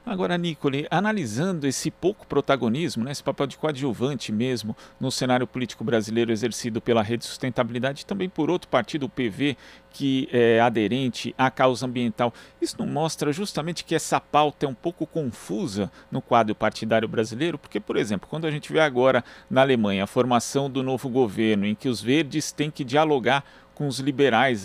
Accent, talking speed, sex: Brazilian, 180 wpm, male